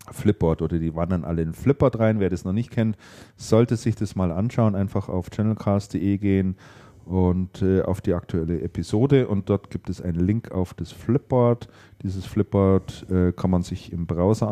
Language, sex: German, male